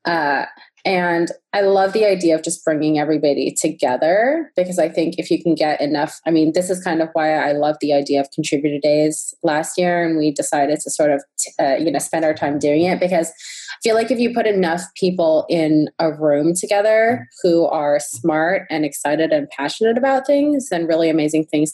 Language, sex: English, female